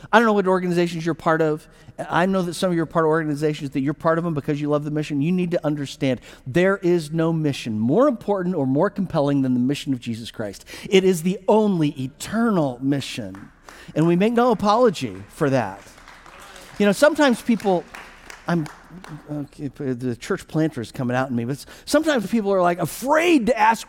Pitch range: 150-220 Hz